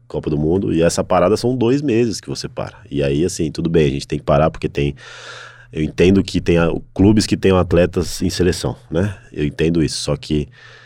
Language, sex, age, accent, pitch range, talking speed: Portuguese, male, 20-39, Brazilian, 75-95 Hz, 225 wpm